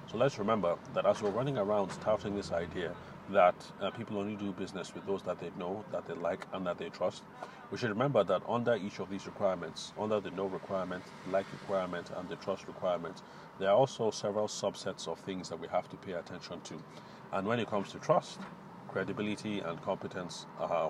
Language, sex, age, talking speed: English, male, 40-59, 205 wpm